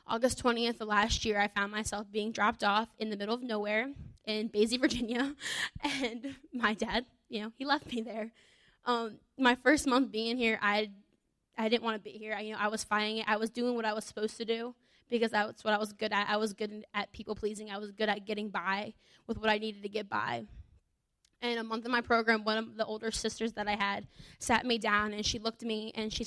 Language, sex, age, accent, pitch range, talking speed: English, female, 10-29, American, 210-230 Hz, 245 wpm